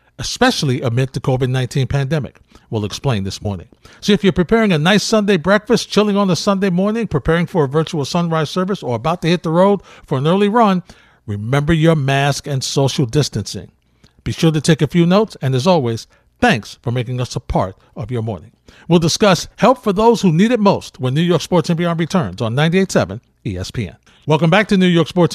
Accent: American